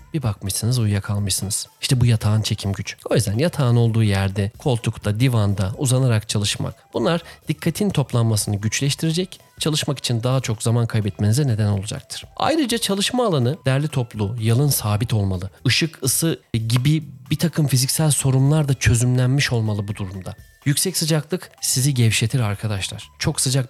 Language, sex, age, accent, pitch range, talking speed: Turkish, male, 40-59, native, 110-155 Hz, 140 wpm